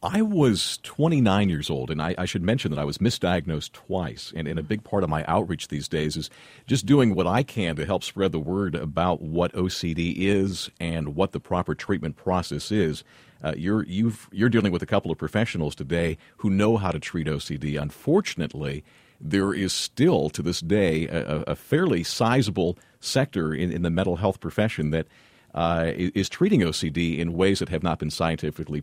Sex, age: male, 50-69